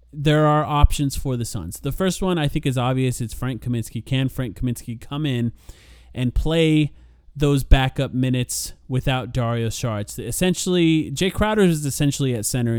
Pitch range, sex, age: 115-160 Hz, male, 30-49